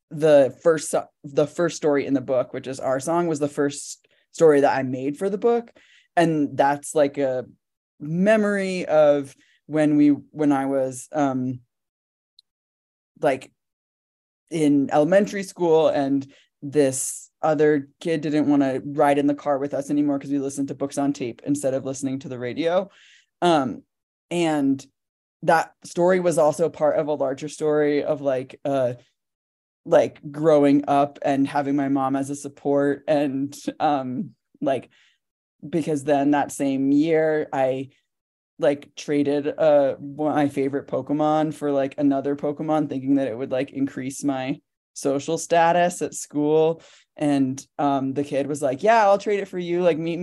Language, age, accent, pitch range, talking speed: English, 20-39, American, 135-155 Hz, 160 wpm